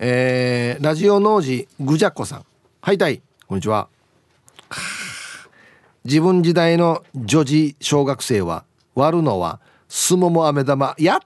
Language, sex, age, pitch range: Japanese, male, 40-59, 135-195 Hz